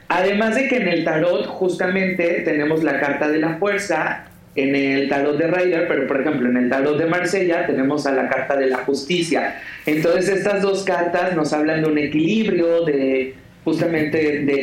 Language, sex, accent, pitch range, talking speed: Spanish, male, Mexican, 140-170 Hz, 185 wpm